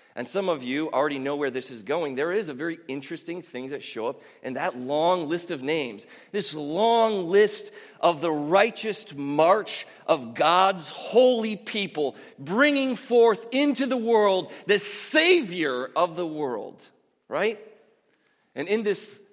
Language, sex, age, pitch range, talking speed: English, male, 40-59, 125-200 Hz, 155 wpm